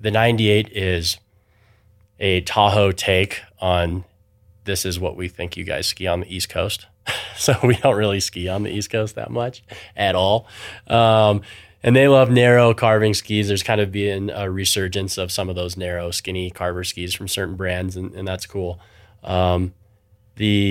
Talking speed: 180 wpm